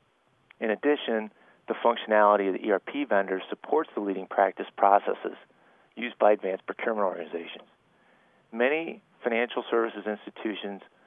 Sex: male